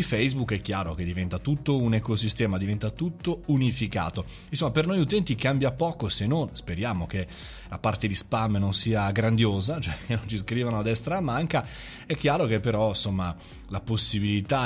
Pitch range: 100-145 Hz